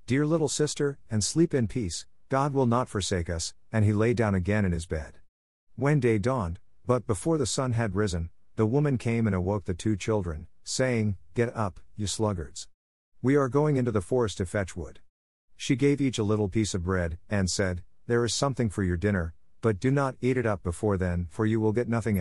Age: 50-69